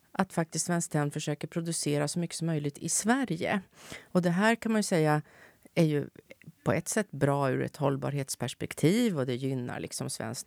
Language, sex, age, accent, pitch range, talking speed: Swedish, female, 30-49, native, 145-185 Hz, 185 wpm